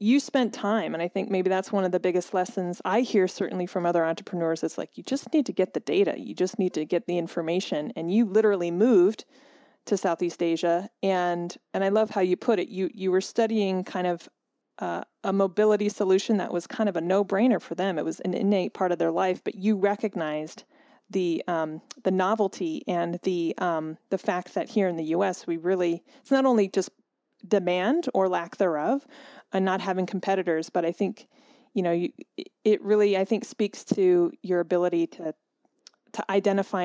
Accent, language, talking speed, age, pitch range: American, English, 205 wpm, 30-49, 175-225 Hz